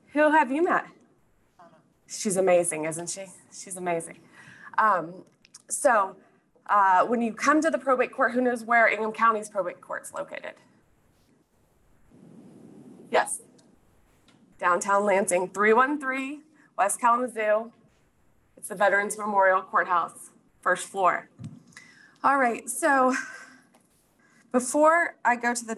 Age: 20-39